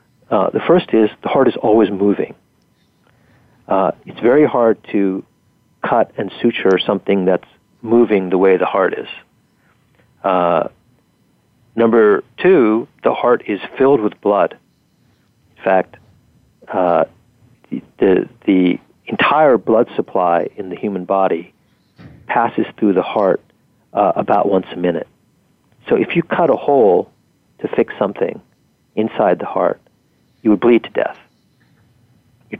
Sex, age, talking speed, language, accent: male, 50-69, 135 wpm, English, American